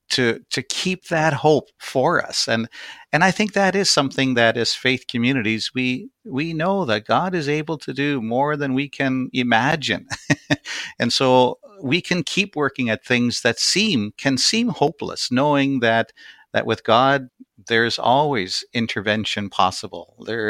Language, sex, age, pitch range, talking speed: English, male, 50-69, 110-145 Hz, 160 wpm